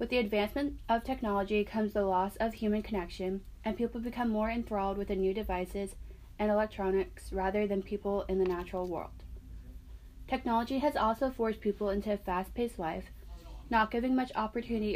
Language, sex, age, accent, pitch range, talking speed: English, female, 20-39, American, 185-220 Hz, 170 wpm